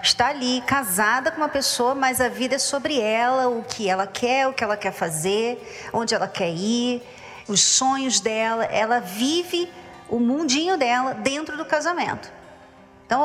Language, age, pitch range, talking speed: Portuguese, 40-59, 220-300 Hz, 170 wpm